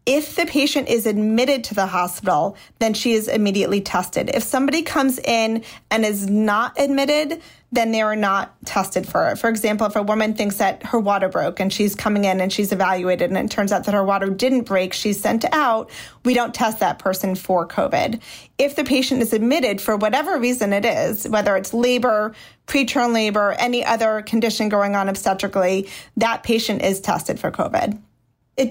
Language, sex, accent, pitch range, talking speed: English, female, American, 195-240 Hz, 190 wpm